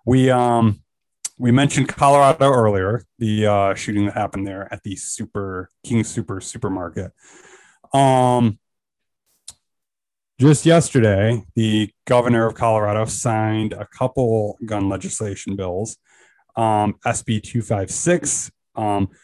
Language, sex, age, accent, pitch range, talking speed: English, male, 30-49, American, 105-125 Hz, 105 wpm